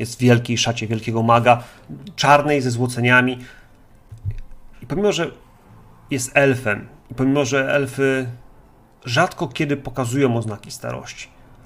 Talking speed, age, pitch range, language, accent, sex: 120 wpm, 40-59, 110-135 Hz, Polish, native, male